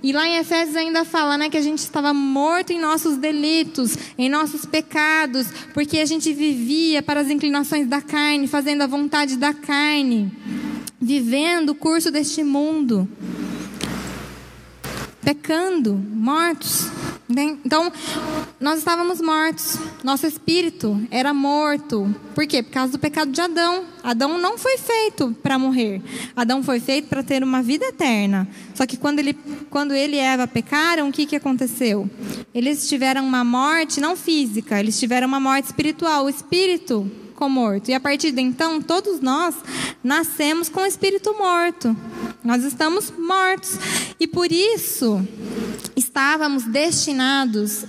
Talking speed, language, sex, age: 145 wpm, Portuguese, female, 10-29